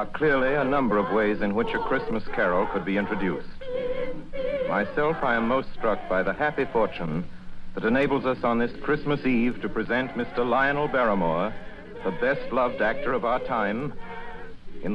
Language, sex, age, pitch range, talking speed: English, male, 60-79, 105-170 Hz, 170 wpm